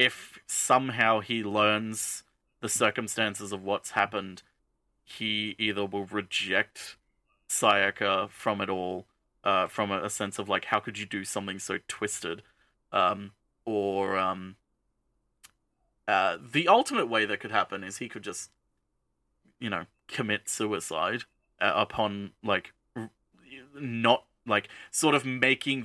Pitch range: 100-115 Hz